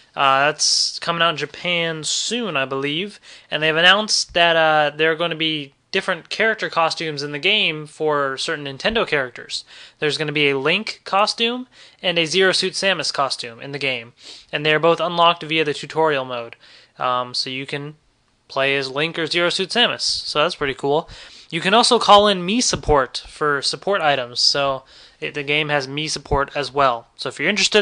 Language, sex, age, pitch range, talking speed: English, male, 20-39, 145-180 Hz, 195 wpm